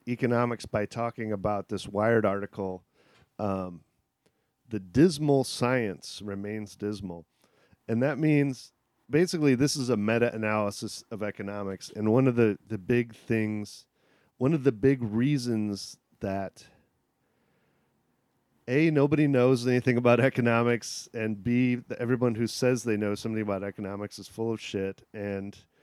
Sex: male